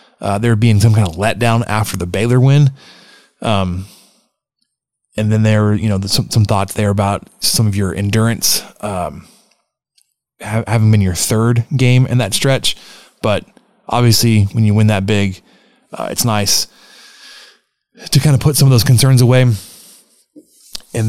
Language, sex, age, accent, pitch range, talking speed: English, male, 20-39, American, 100-120 Hz, 165 wpm